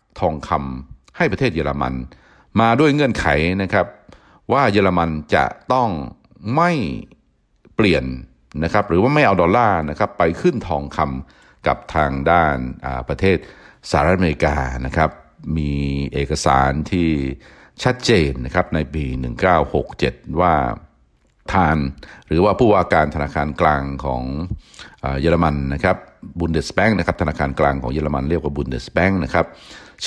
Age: 60-79